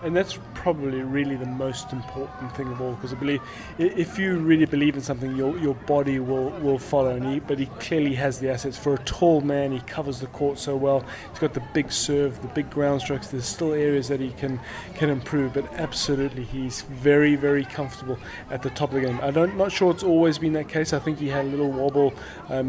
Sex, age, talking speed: male, 20-39, 235 wpm